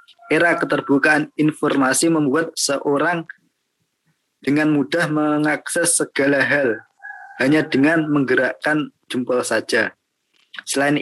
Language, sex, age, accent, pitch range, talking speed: Indonesian, male, 20-39, native, 130-165 Hz, 85 wpm